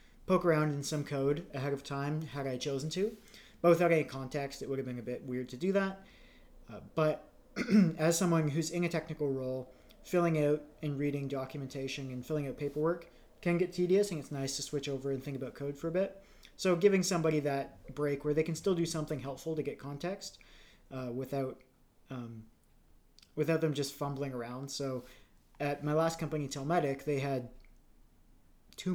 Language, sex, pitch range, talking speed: English, male, 135-160 Hz, 190 wpm